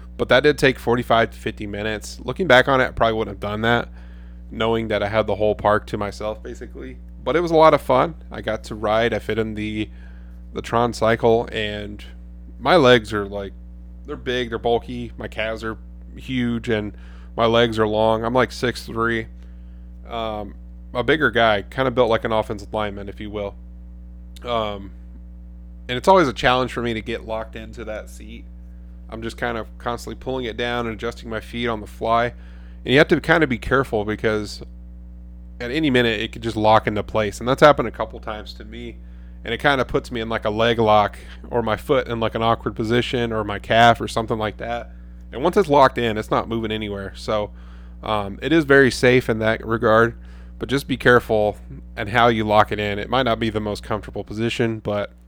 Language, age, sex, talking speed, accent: English, 20-39, male, 215 wpm, American